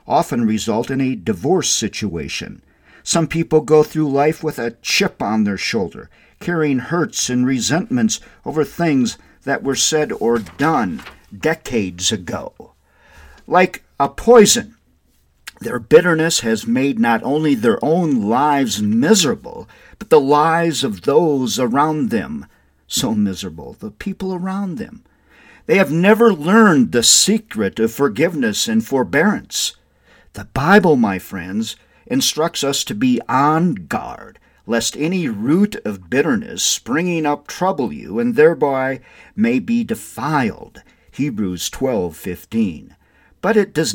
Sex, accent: male, American